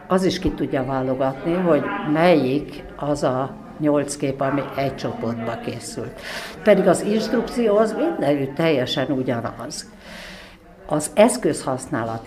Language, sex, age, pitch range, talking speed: Hungarian, female, 60-79, 120-150 Hz, 115 wpm